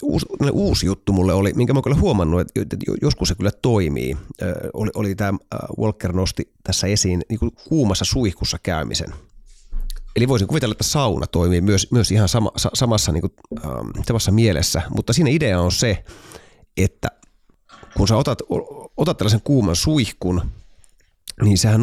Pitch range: 95-120 Hz